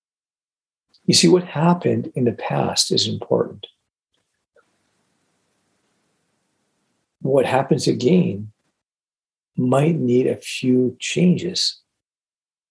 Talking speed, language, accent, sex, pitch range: 80 wpm, English, American, male, 115-175 Hz